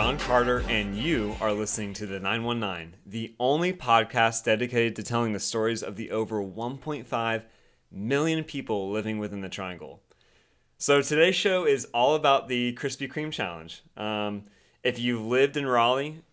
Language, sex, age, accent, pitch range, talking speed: English, male, 30-49, American, 105-125 Hz, 175 wpm